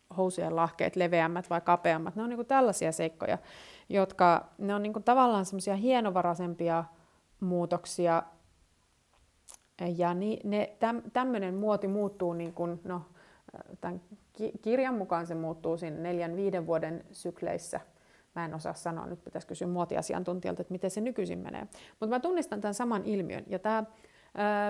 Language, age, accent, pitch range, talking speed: Finnish, 30-49, native, 170-215 Hz, 140 wpm